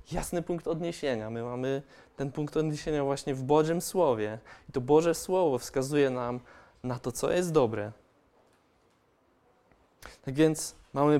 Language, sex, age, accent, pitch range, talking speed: Polish, male, 20-39, native, 130-155 Hz, 140 wpm